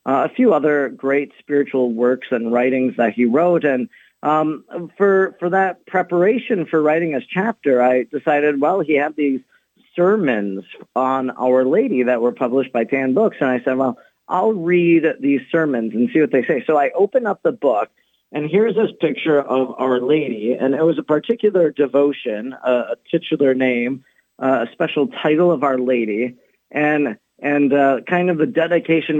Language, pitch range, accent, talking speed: English, 135-175 Hz, American, 175 wpm